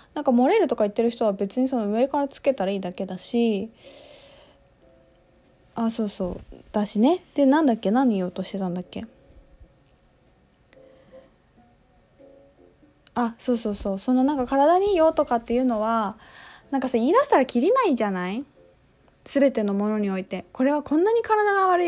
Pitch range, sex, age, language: 215-280 Hz, female, 20-39, Japanese